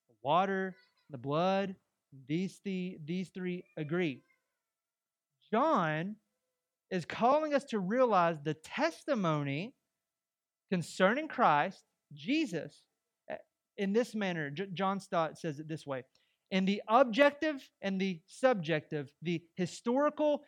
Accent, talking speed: American, 105 wpm